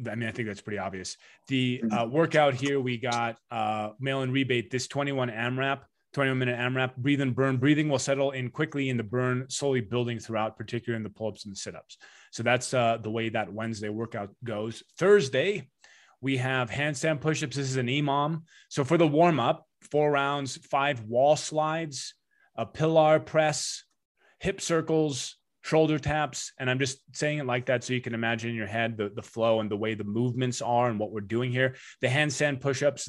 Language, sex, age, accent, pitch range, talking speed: English, male, 30-49, American, 115-140 Hz, 200 wpm